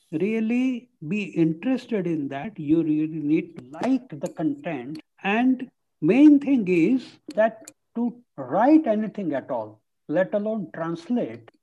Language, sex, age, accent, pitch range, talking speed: English, male, 60-79, Indian, 170-225 Hz, 130 wpm